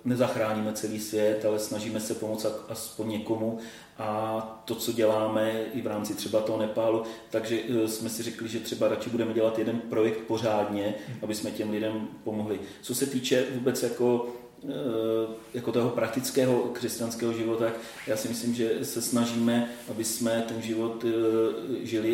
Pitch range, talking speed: 110-115 Hz, 155 wpm